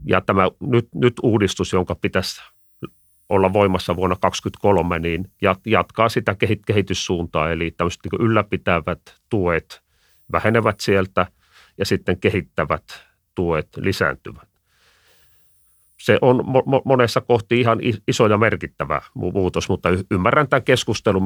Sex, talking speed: male, 110 wpm